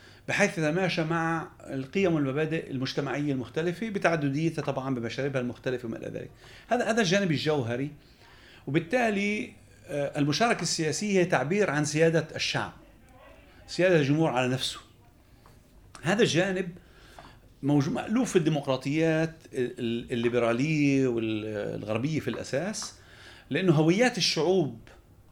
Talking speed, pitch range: 100 wpm, 120-170 Hz